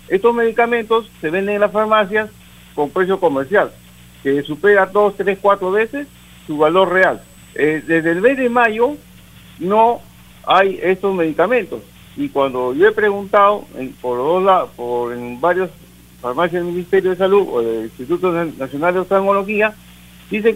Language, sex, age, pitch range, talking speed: Spanish, male, 60-79, 150-215 Hz, 155 wpm